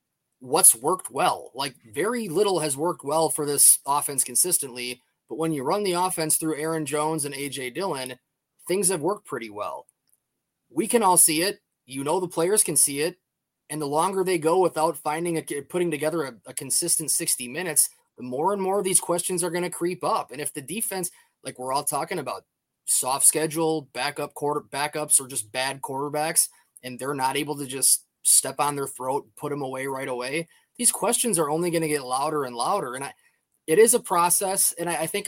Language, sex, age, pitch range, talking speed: English, male, 20-39, 130-165 Hz, 210 wpm